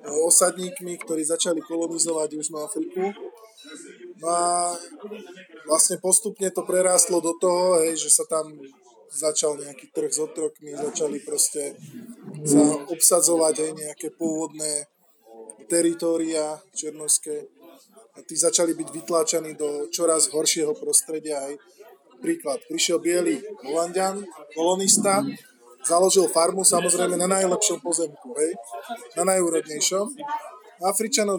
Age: 20-39